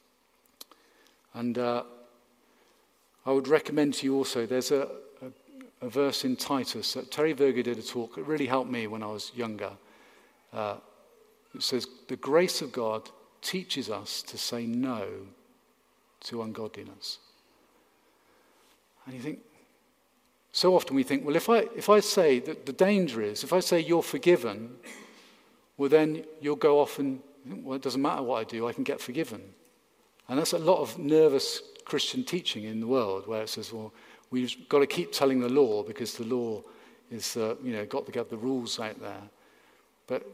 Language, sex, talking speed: English, male, 175 wpm